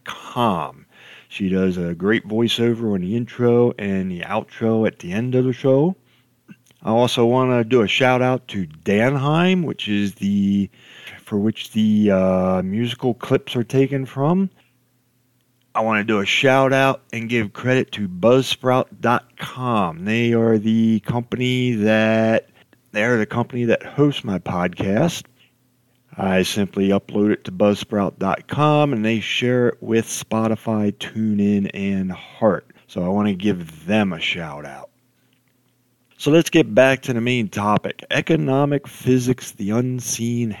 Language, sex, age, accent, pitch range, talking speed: English, male, 40-59, American, 105-130 Hz, 145 wpm